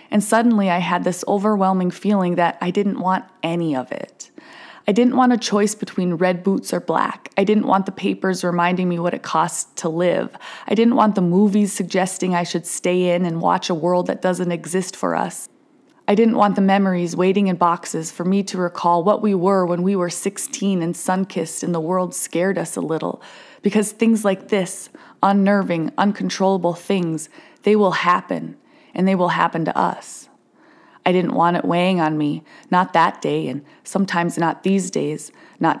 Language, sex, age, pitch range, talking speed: English, female, 20-39, 175-205 Hz, 195 wpm